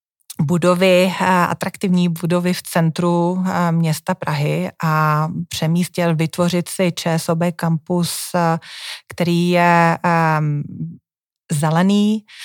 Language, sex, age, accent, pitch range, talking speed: Czech, female, 30-49, native, 165-185 Hz, 75 wpm